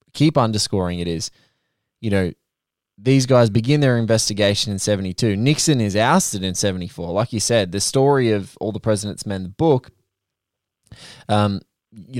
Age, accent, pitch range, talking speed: 20-39, Australian, 100-125 Hz, 155 wpm